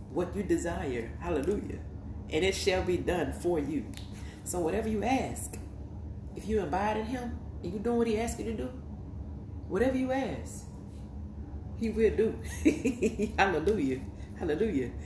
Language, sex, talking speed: English, female, 145 wpm